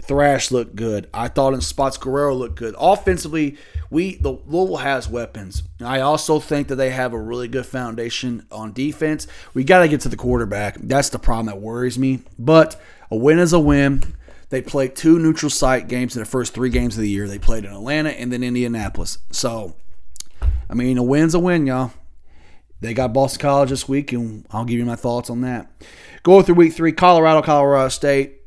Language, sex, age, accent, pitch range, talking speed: English, male, 30-49, American, 115-140 Hz, 205 wpm